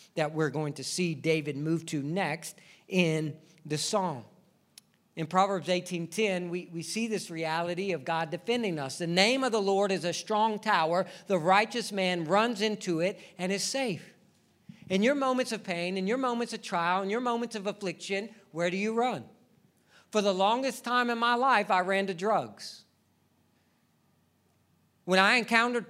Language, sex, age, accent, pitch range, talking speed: English, male, 50-69, American, 175-245 Hz, 175 wpm